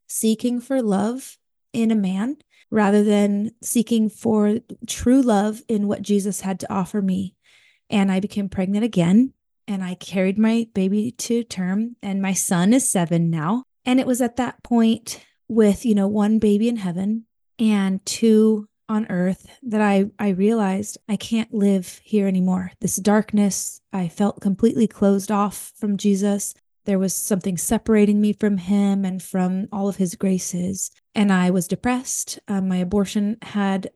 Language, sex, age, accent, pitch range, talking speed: English, female, 20-39, American, 190-220 Hz, 165 wpm